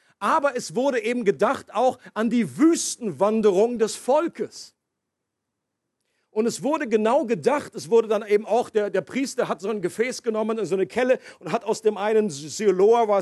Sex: male